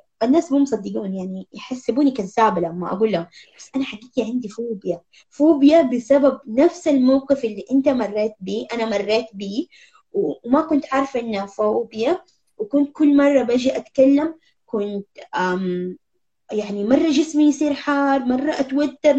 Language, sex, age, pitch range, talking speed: Arabic, female, 20-39, 210-285 Hz, 140 wpm